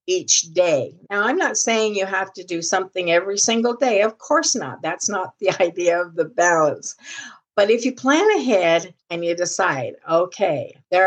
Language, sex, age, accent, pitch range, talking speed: English, female, 50-69, American, 160-215 Hz, 185 wpm